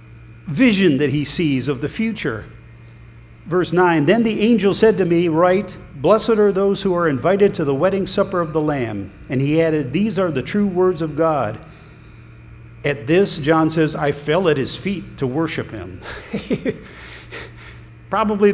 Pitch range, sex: 130-195 Hz, male